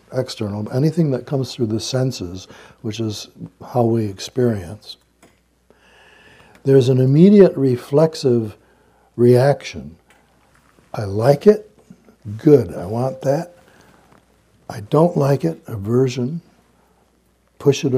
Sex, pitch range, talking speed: male, 115-145 Hz, 105 wpm